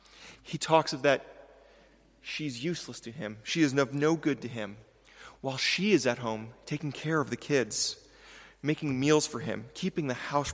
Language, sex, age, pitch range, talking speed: English, male, 30-49, 125-155 Hz, 180 wpm